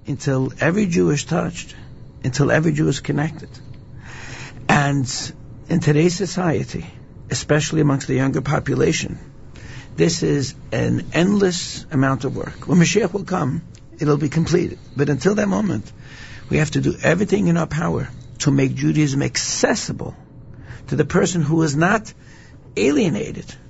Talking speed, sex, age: 145 wpm, male, 60-79